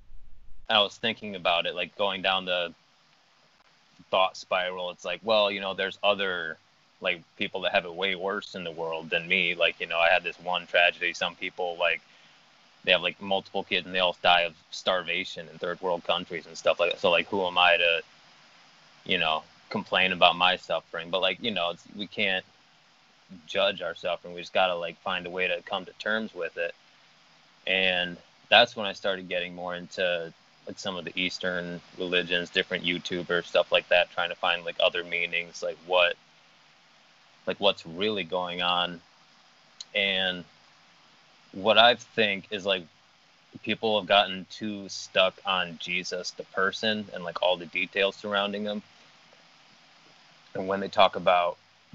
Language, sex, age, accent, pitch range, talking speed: English, male, 20-39, American, 85-100 Hz, 175 wpm